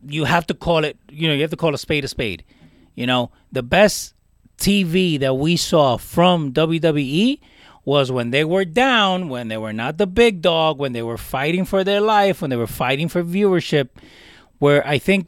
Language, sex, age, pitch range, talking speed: English, male, 30-49, 125-185 Hz, 210 wpm